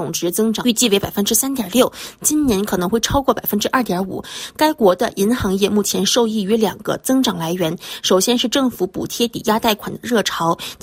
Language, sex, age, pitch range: Chinese, female, 20-39, 185-250 Hz